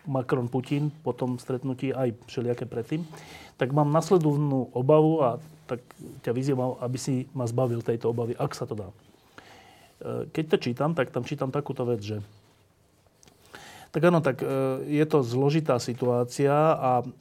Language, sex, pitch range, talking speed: Slovak, male, 120-150 Hz, 145 wpm